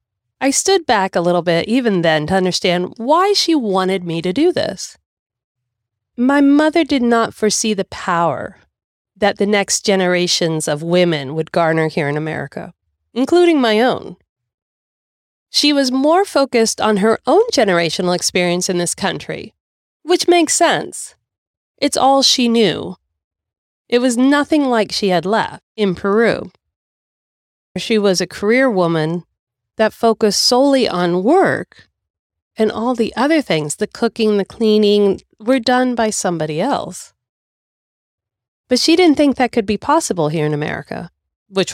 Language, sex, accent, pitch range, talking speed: English, female, American, 165-250 Hz, 145 wpm